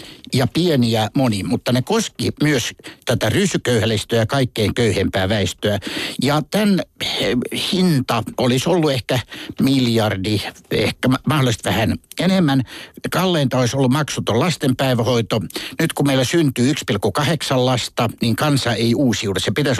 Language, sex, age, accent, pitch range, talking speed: Finnish, male, 60-79, native, 110-140 Hz, 125 wpm